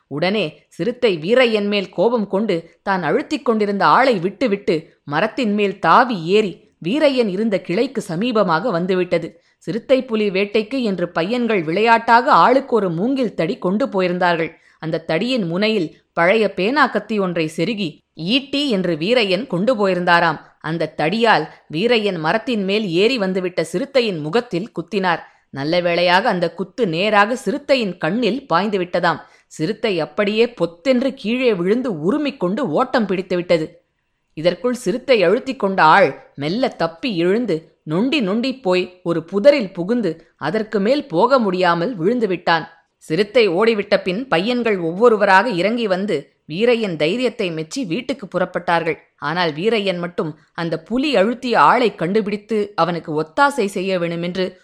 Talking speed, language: 125 wpm, Tamil